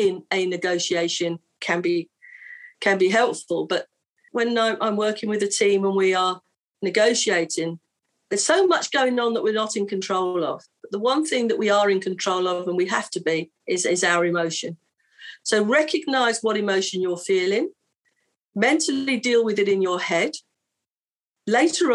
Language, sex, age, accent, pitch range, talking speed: English, female, 40-59, British, 180-235 Hz, 170 wpm